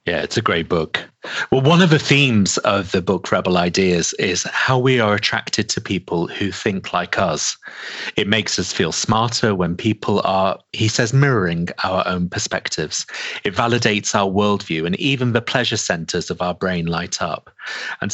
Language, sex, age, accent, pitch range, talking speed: English, male, 30-49, British, 90-130 Hz, 180 wpm